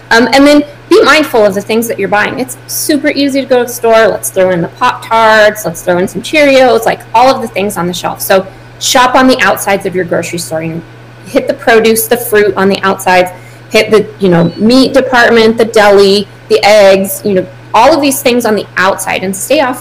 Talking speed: 235 wpm